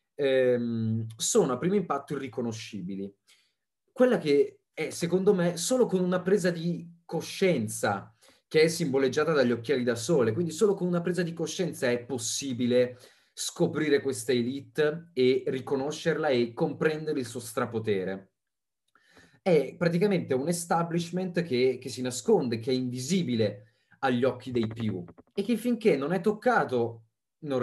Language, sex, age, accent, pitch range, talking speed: Italian, male, 30-49, native, 115-170 Hz, 140 wpm